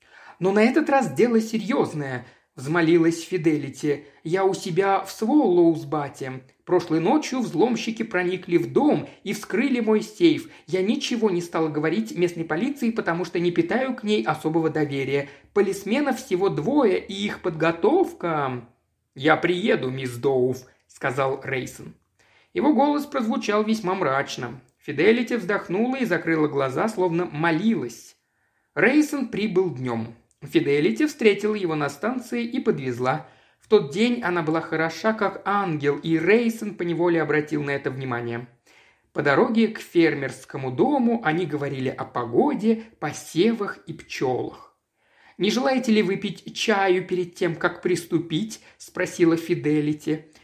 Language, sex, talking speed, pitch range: Russian, male, 130 wpm, 145-215 Hz